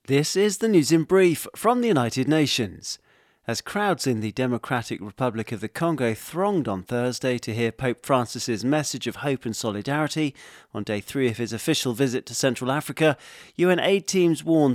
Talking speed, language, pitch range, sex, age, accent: 185 wpm, English, 120-150 Hz, male, 40-59, British